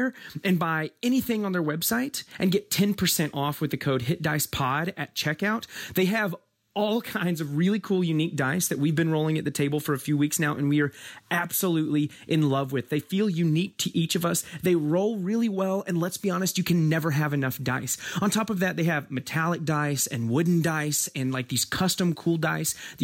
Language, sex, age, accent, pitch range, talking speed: English, male, 30-49, American, 150-195 Hz, 220 wpm